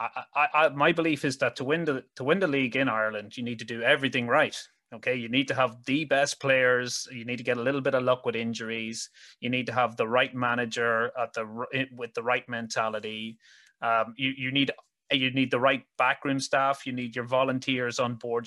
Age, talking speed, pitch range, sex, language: 30-49, 225 wpm, 120-145 Hz, male, English